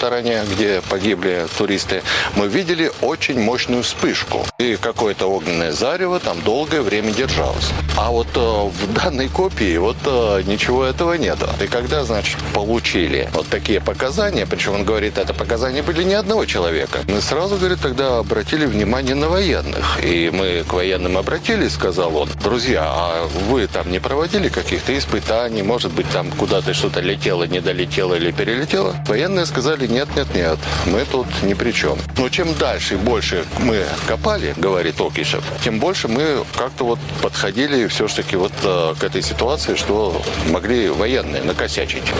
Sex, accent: male, native